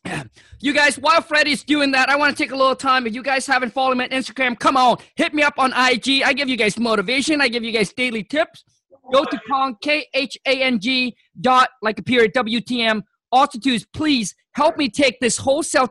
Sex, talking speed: male, 230 wpm